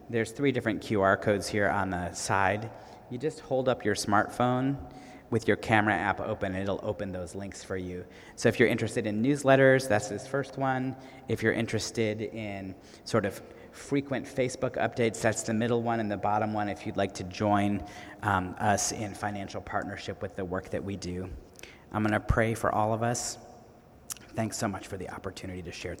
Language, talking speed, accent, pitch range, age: English, 200 wpm, American, 100-115 Hz, 40-59